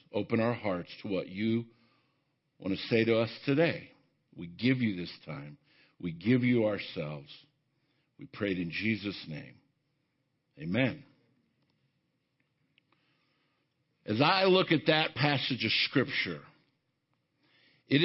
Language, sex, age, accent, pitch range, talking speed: English, male, 50-69, American, 125-165 Hz, 120 wpm